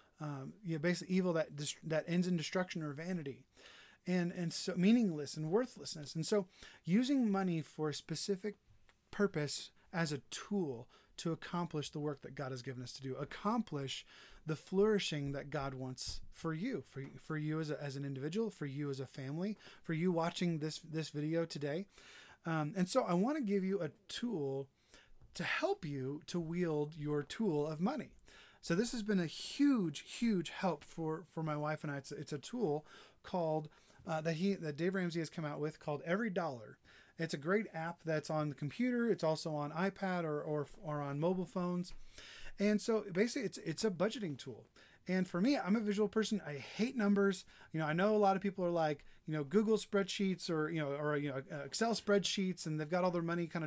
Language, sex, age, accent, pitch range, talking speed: English, male, 30-49, American, 150-195 Hz, 205 wpm